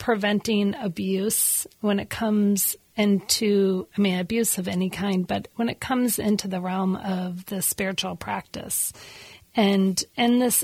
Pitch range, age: 190-230 Hz, 40-59